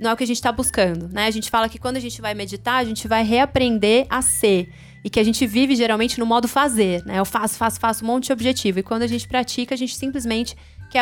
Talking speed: 280 wpm